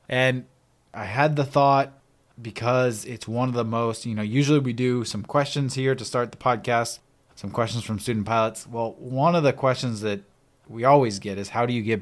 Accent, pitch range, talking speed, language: American, 105-130 Hz, 210 wpm, English